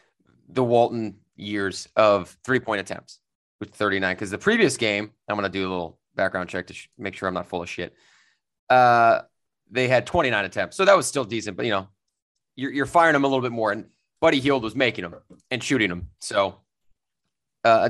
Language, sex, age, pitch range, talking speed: English, male, 30-49, 100-135 Hz, 205 wpm